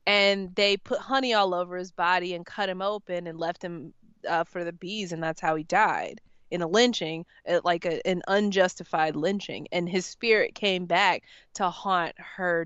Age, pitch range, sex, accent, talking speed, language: 20-39, 175-205 Hz, female, American, 185 wpm, English